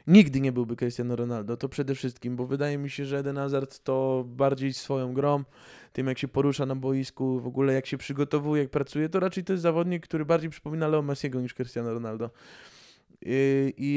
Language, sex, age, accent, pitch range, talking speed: Polish, male, 20-39, native, 135-165 Hz, 200 wpm